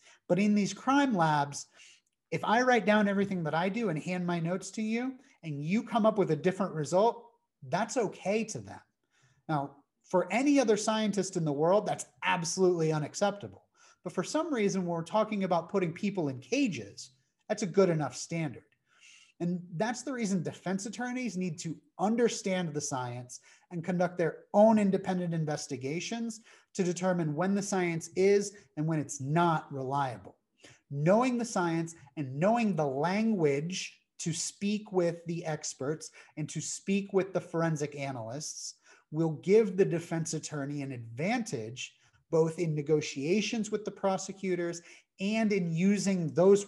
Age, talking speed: 30-49, 160 wpm